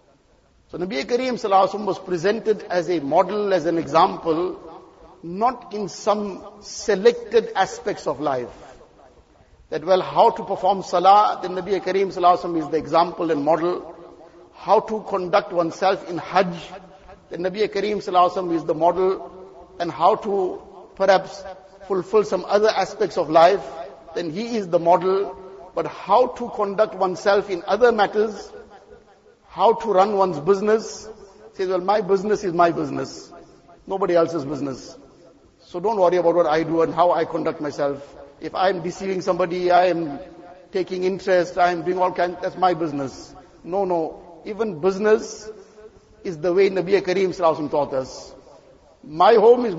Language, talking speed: English, 155 wpm